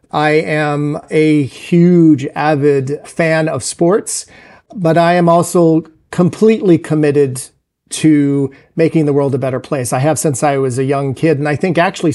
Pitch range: 145-170 Hz